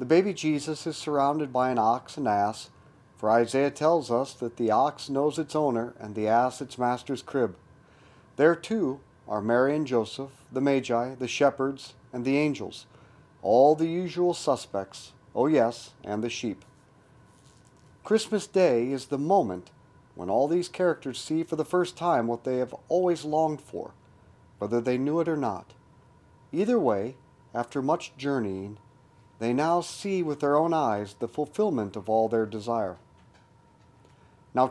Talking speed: 160 wpm